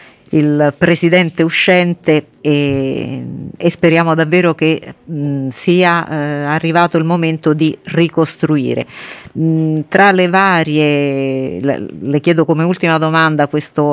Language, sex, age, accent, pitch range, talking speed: Italian, female, 40-59, native, 140-165 Hz, 110 wpm